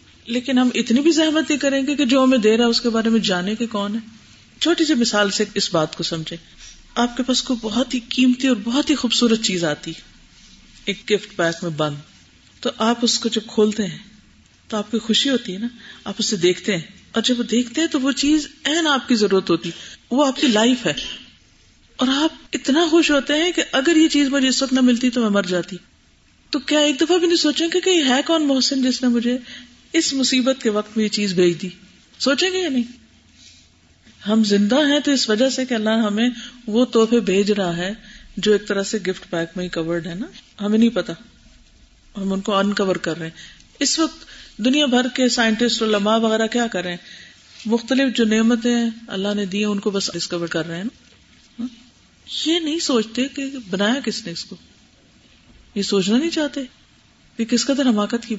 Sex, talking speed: female, 210 wpm